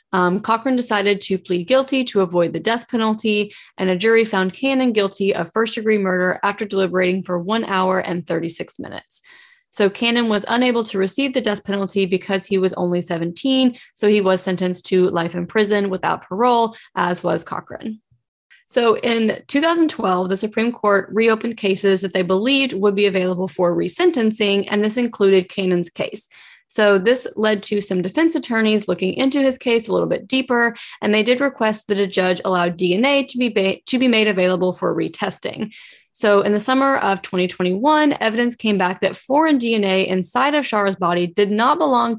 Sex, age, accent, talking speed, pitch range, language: female, 20-39, American, 180 wpm, 185-235 Hz, English